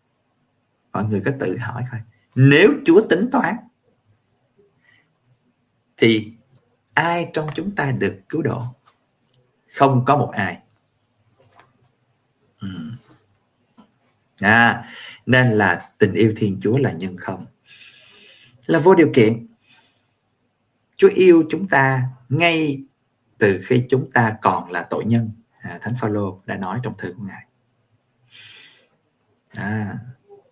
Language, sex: Vietnamese, male